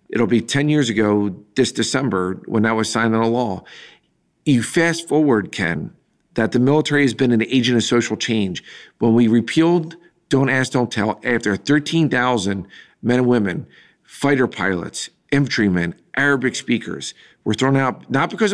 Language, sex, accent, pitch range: English, male, American, 105-140 Hz